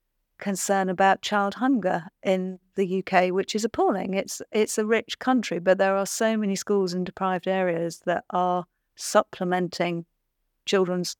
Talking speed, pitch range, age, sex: 150 wpm, 165-195 Hz, 50-69, female